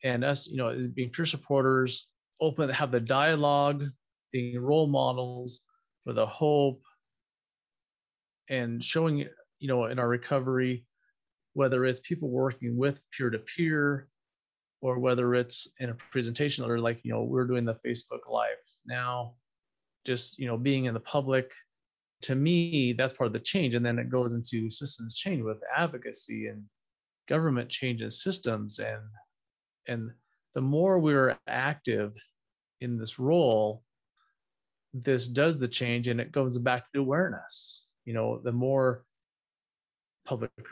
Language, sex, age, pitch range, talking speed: English, male, 30-49, 120-140 Hz, 145 wpm